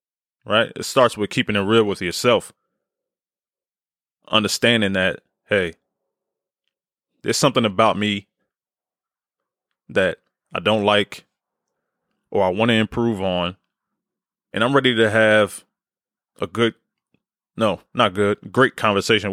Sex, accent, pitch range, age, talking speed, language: male, American, 100-120 Hz, 20-39, 120 wpm, English